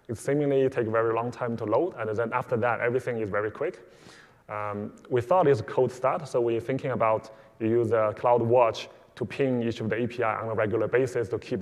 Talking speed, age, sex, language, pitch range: 230 wpm, 20-39, male, English, 110-135 Hz